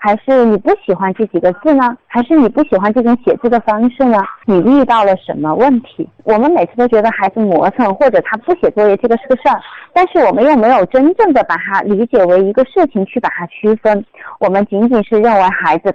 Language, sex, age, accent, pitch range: Chinese, female, 30-49, native, 195-260 Hz